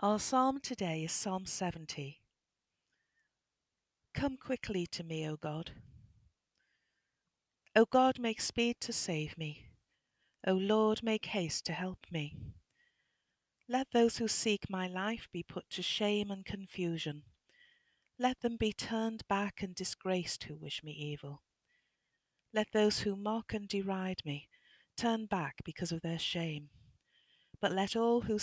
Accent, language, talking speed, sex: British, English, 140 wpm, female